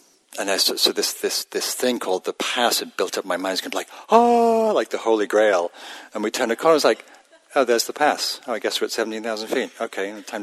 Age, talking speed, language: 50-69, 260 wpm, English